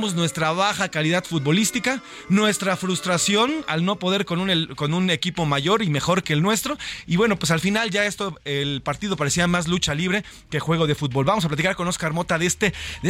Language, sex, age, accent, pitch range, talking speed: Spanish, male, 30-49, Mexican, 150-210 Hz, 215 wpm